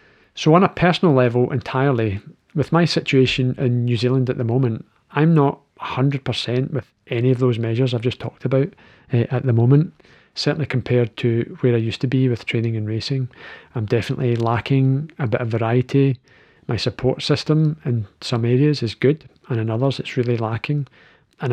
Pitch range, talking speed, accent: 120-140 Hz, 180 wpm, British